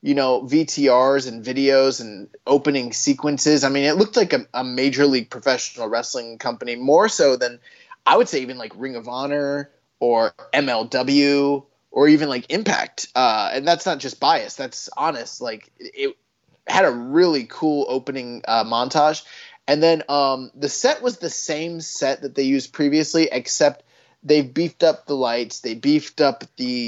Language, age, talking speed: English, 20-39, 170 wpm